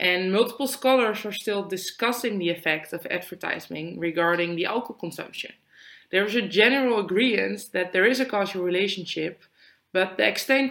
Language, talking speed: English, 155 wpm